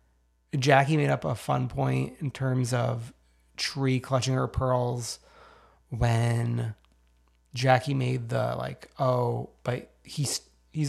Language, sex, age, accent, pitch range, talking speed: English, male, 30-49, American, 115-150 Hz, 120 wpm